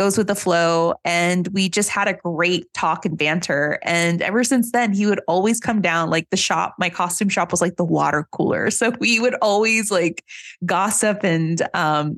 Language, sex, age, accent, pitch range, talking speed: English, female, 20-39, American, 175-205 Hz, 200 wpm